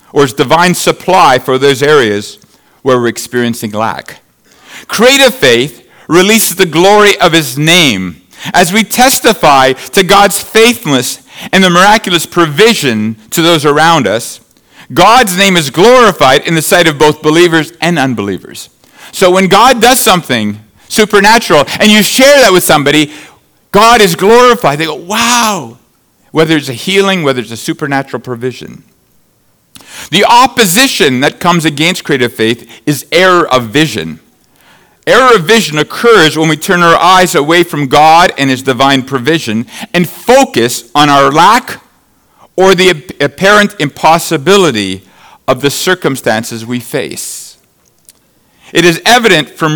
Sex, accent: male, American